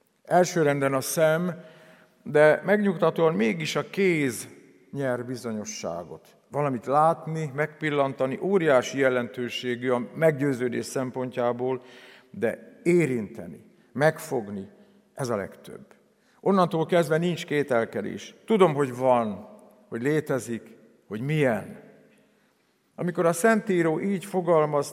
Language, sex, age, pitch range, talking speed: Hungarian, male, 50-69, 130-175 Hz, 95 wpm